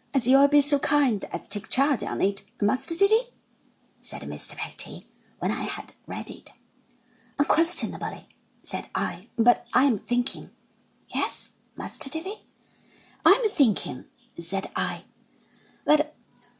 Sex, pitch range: female, 220-300 Hz